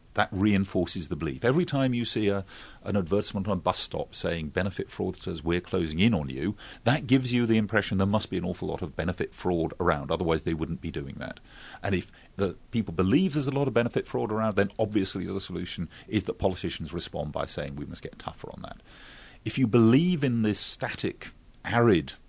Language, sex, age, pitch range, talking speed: English, male, 40-59, 90-125 Hz, 215 wpm